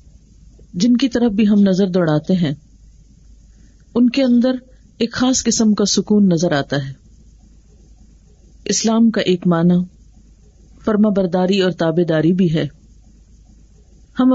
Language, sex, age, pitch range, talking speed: Urdu, female, 40-59, 155-205 Hz, 125 wpm